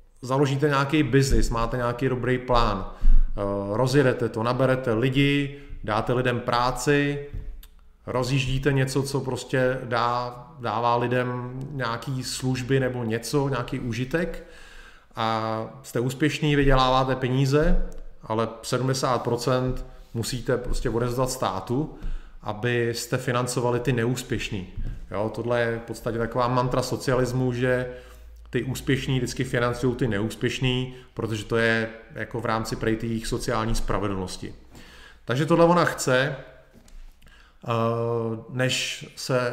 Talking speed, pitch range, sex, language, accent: 110 wpm, 115-130 Hz, male, Czech, native